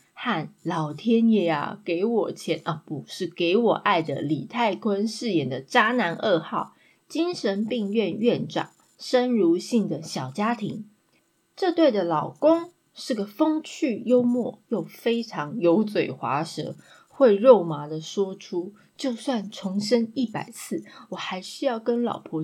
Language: Chinese